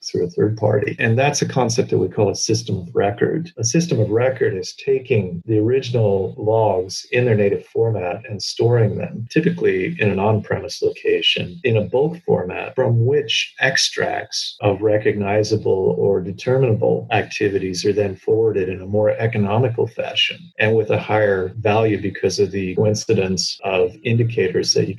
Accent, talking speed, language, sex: American, 165 wpm, English, male